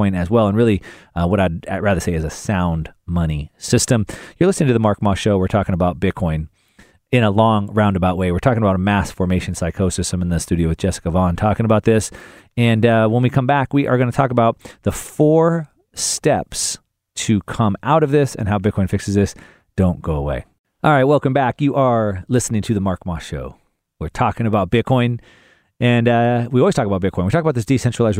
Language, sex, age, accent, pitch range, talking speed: English, male, 30-49, American, 95-120 Hz, 220 wpm